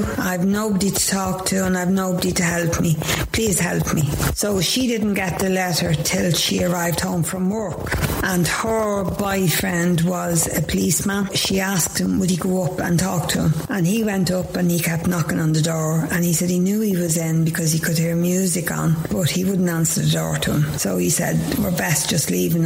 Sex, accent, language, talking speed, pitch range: female, Irish, English, 220 wpm, 170-205 Hz